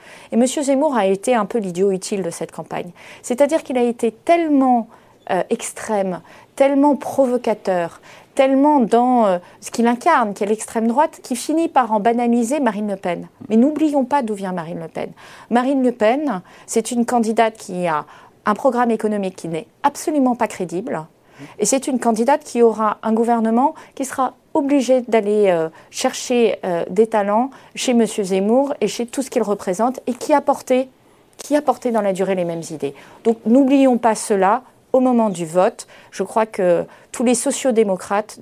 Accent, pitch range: French, 200-260 Hz